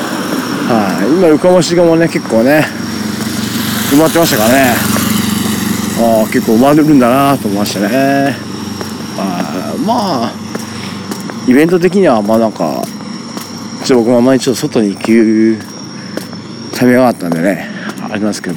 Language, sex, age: Japanese, male, 40-59